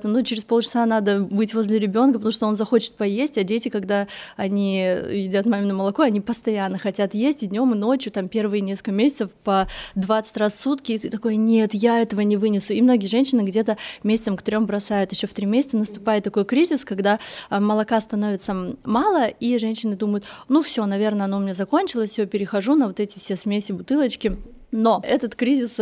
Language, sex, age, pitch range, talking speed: Russian, female, 20-39, 205-230 Hz, 195 wpm